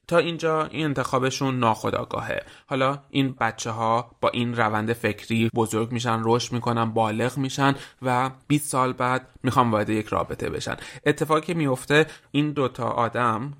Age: 30-49